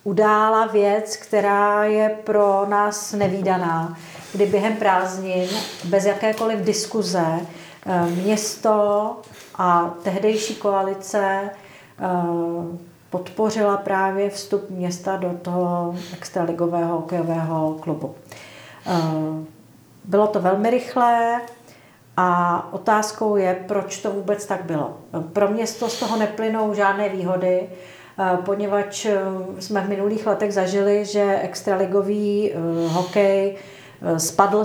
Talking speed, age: 100 wpm, 40-59